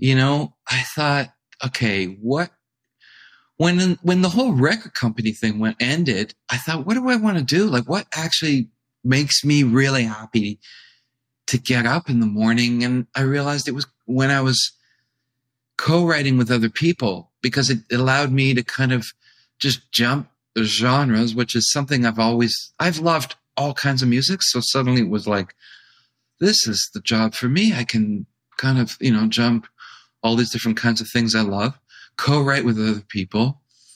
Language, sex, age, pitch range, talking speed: English, male, 50-69, 115-140 Hz, 180 wpm